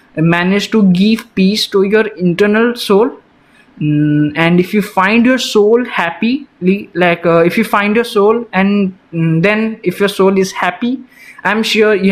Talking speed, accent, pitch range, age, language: 160 wpm, native, 170-205 Hz, 20-39, Hindi